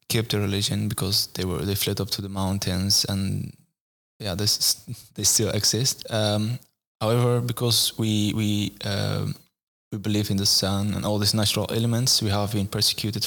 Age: 10-29